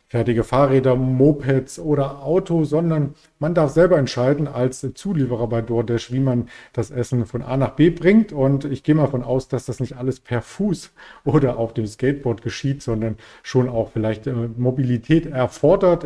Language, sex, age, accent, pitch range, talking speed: German, male, 40-59, German, 120-150 Hz, 170 wpm